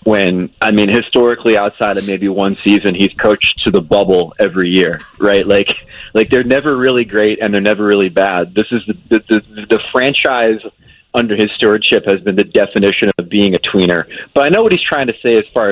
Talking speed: 215 wpm